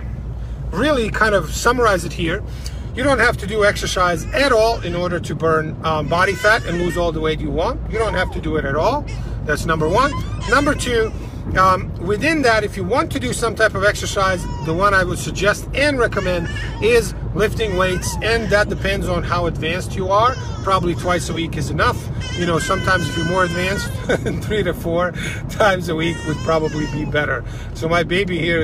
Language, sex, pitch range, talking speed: English, male, 150-185 Hz, 205 wpm